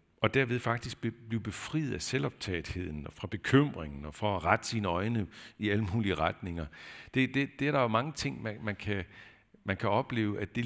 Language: Danish